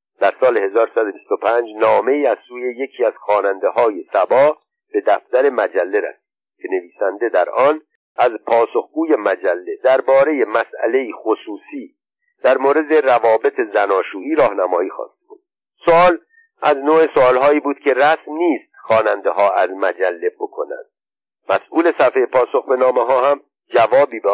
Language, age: Persian, 50-69